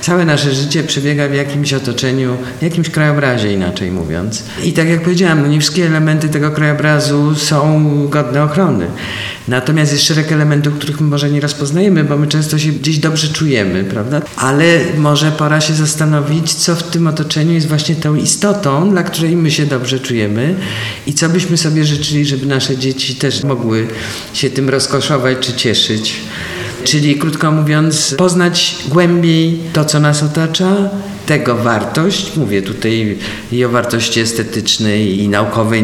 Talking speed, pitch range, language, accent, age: 155 wpm, 130-160 Hz, Polish, native, 50-69